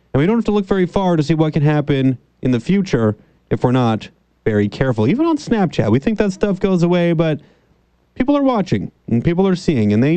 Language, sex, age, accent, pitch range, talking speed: English, male, 30-49, American, 120-175 Hz, 235 wpm